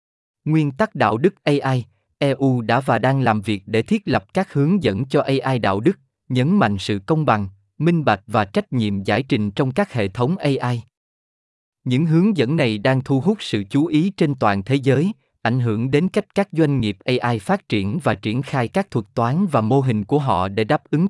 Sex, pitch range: male, 110-155 Hz